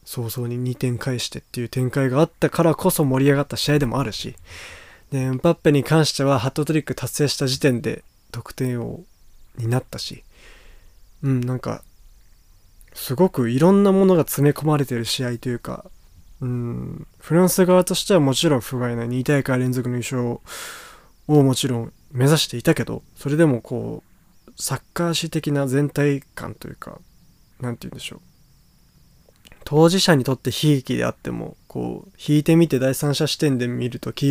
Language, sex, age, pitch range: Japanese, male, 20-39, 125-145 Hz